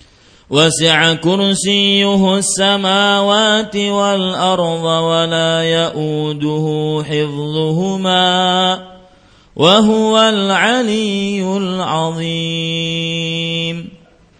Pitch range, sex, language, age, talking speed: 165-200 Hz, male, Malay, 40-59, 40 wpm